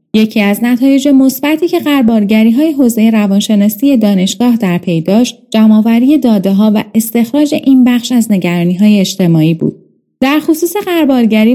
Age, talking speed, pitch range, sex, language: 30-49, 130 wpm, 200-265 Hz, female, Persian